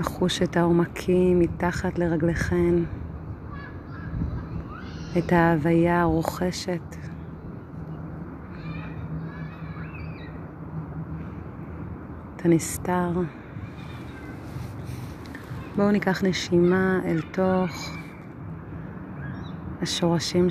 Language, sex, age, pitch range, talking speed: Hebrew, female, 30-49, 135-175 Hz, 45 wpm